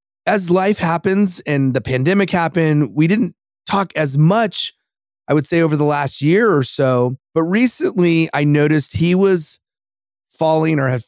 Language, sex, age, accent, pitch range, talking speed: English, male, 30-49, American, 130-160 Hz, 160 wpm